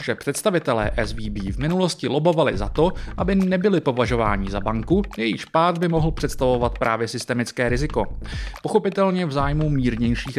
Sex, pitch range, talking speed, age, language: male, 125-170 Hz, 145 wpm, 30-49, Czech